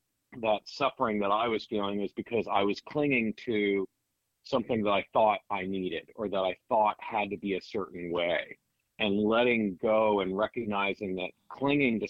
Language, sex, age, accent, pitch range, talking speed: English, male, 40-59, American, 100-120 Hz, 180 wpm